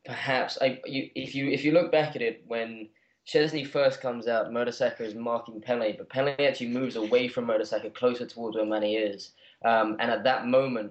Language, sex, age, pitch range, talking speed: English, male, 10-29, 110-125 Hz, 205 wpm